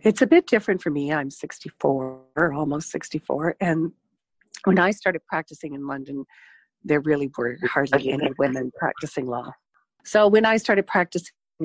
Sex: female